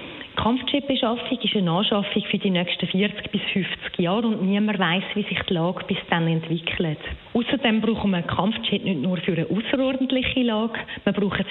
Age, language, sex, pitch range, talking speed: 30-49, German, female, 180-230 Hz, 175 wpm